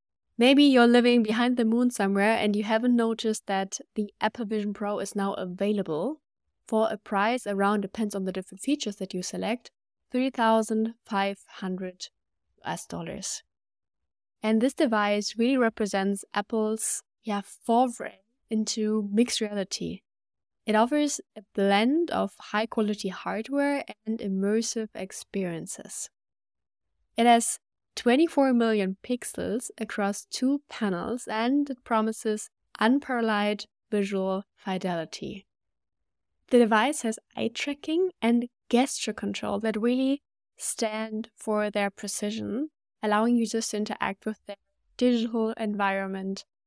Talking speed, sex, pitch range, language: 120 wpm, female, 200-235 Hz, English